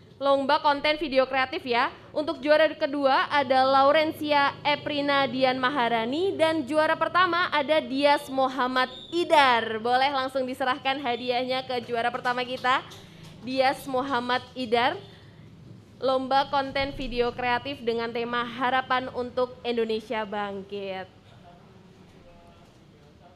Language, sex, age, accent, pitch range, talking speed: Indonesian, female, 20-39, native, 255-310 Hz, 105 wpm